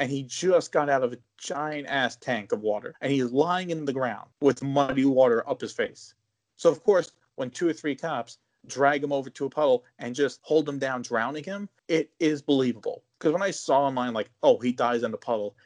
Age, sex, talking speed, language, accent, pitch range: 30-49, male, 225 wpm, English, American, 130-170 Hz